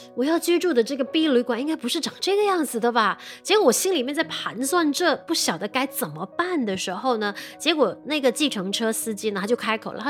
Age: 20-39